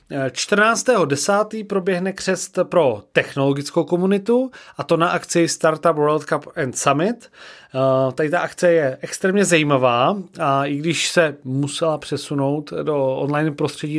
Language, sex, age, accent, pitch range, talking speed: Czech, male, 30-49, native, 145-175 Hz, 125 wpm